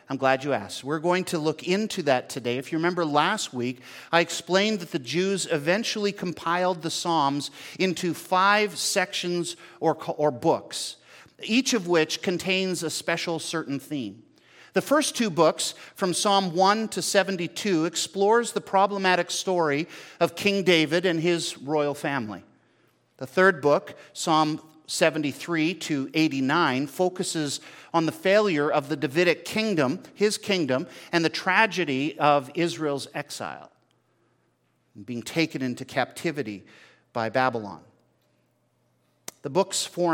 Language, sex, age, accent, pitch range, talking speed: English, male, 50-69, American, 140-185 Hz, 135 wpm